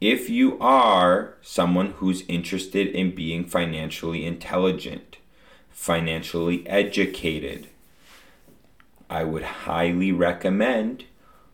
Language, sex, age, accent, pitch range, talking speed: English, male, 30-49, American, 85-110 Hz, 85 wpm